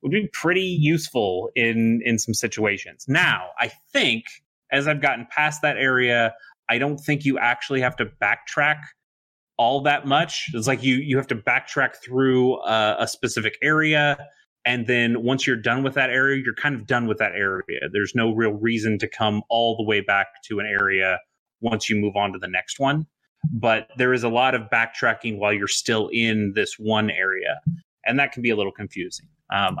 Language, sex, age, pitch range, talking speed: English, male, 30-49, 110-130 Hz, 195 wpm